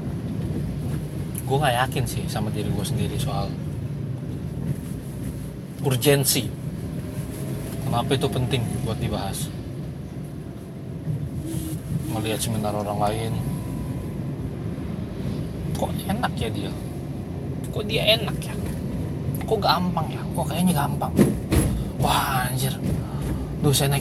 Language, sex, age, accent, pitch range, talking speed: Indonesian, male, 20-39, native, 120-145 Hz, 90 wpm